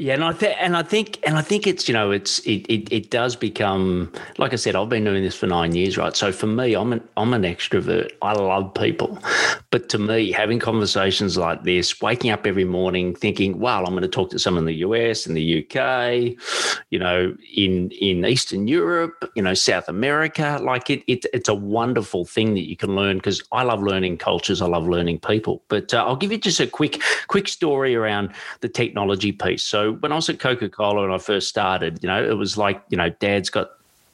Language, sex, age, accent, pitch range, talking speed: English, male, 40-59, Australian, 90-120 Hz, 230 wpm